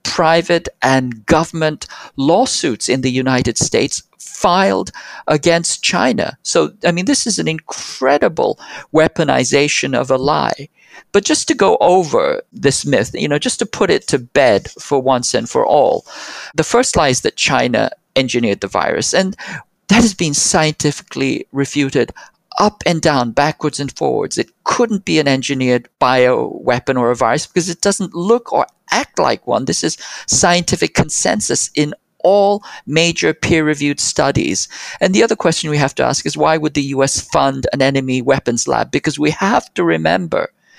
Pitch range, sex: 135-180 Hz, male